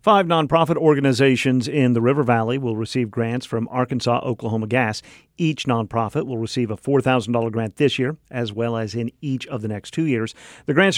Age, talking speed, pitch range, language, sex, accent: 50-69, 190 wpm, 115-150 Hz, English, male, American